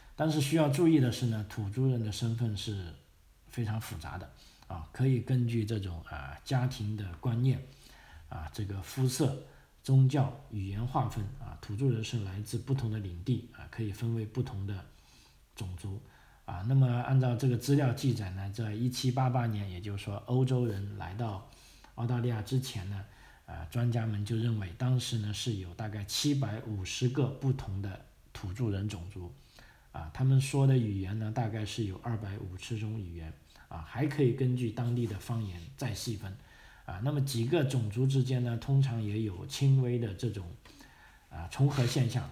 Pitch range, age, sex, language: 100-130 Hz, 50-69, male, Chinese